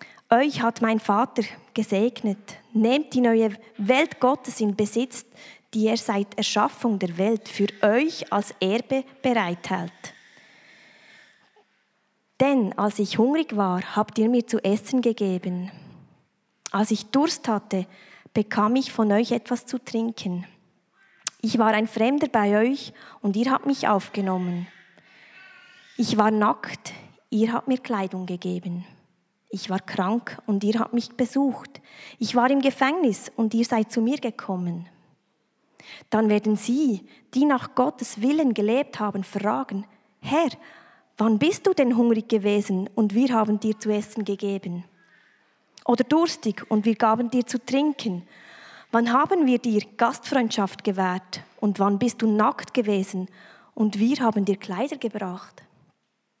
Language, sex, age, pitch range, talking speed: German, female, 20-39, 200-245 Hz, 140 wpm